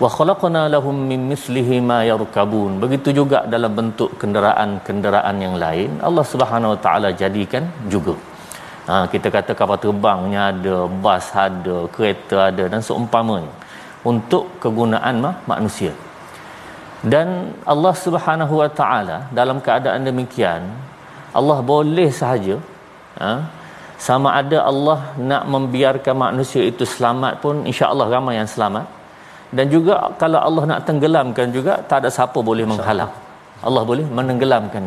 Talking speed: 130 wpm